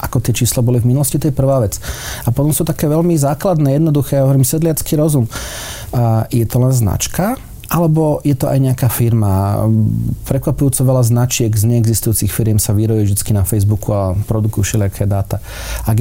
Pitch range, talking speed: 105-130 Hz, 175 wpm